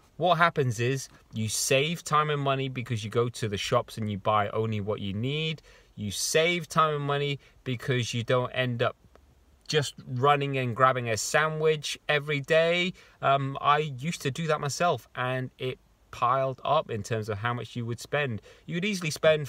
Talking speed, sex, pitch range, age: 190 wpm, male, 115-150 Hz, 30-49